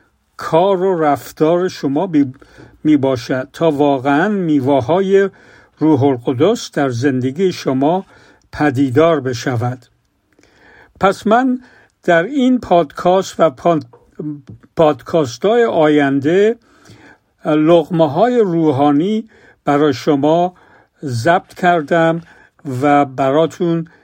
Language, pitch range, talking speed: Persian, 145-185 Hz, 80 wpm